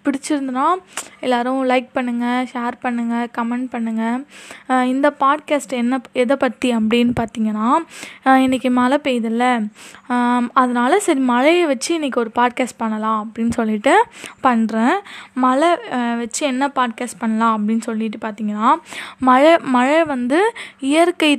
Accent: native